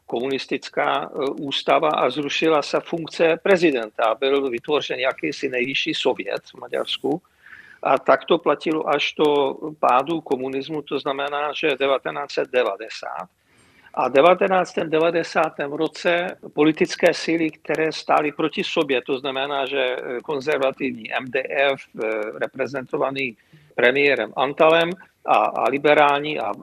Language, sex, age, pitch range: Czech, male, 50-69, 140-165 Hz